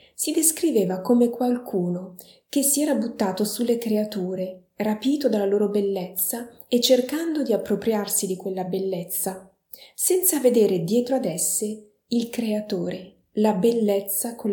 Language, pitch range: Italian, 190-235 Hz